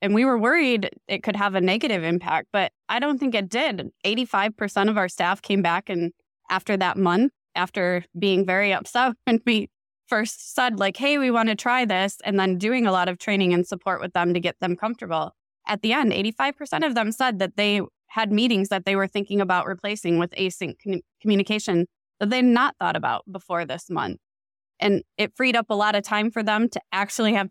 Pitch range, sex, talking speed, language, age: 180-225 Hz, female, 210 wpm, English, 20-39